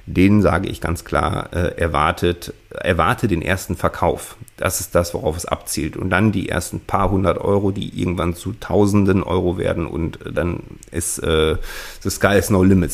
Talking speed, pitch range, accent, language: 180 wpm, 85-105 Hz, German, German